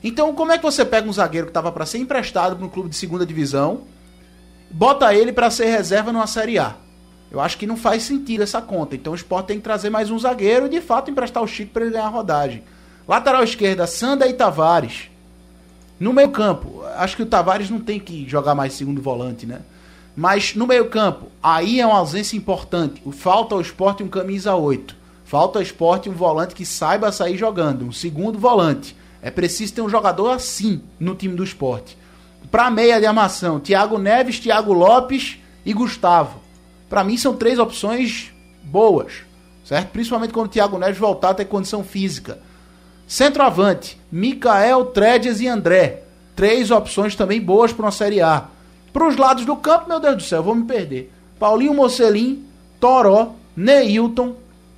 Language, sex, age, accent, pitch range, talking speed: Portuguese, male, 20-39, Brazilian, 155-230 Hz, 185 wpm